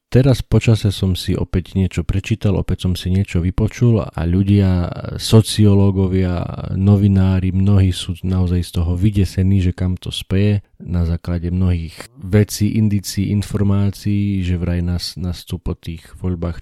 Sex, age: male, 40-59